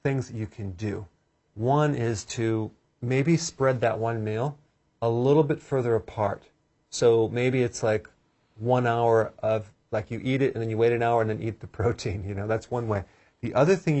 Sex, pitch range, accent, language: male, 110-130 Hz, American, English